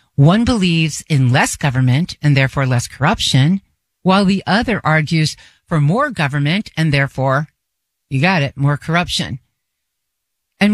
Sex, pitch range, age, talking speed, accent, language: female, 145-200 Hz, 50-69, 135 wpm, American, English